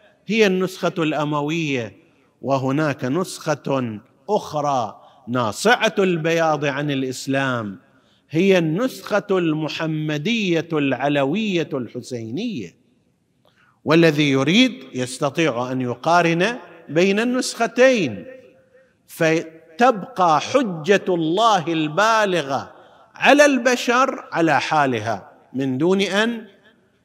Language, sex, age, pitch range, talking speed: Arabic, male, 50-69, 140-195 Hz, 75 wpm